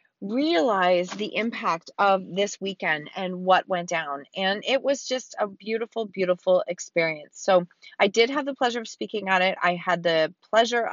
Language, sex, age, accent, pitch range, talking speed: English, female, 30-49, American, 185-235 Hz, 175 wpm